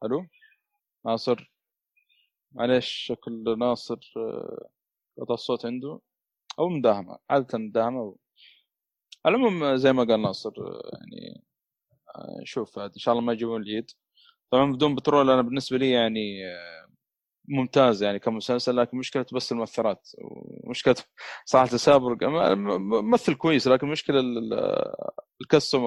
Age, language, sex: 20-39, Arabic, male